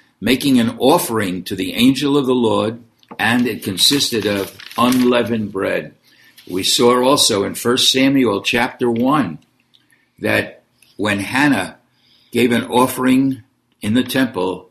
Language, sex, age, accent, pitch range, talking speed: English, male, 60-79, American, 100-130 Hz, 130 wpm